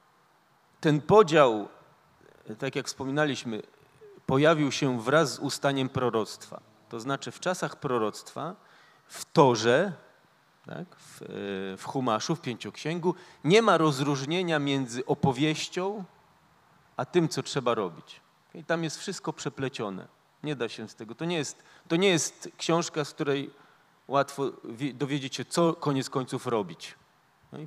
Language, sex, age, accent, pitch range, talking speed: Polish, male, 40-59, native, 130-160 Hz, 135 wpm